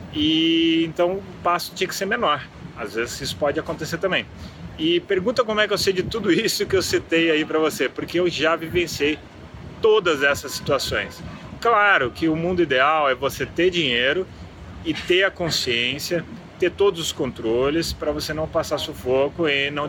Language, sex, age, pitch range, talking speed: Portuguese, male, 30-49, 135-180 Hz, 185 wpm